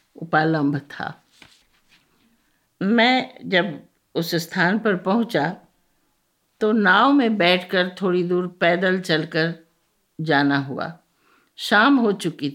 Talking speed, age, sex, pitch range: 100 wpm, 50-69, female, 165-225 Hz